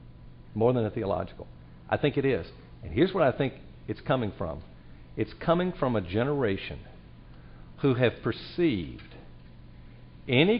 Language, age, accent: English, 50-69, American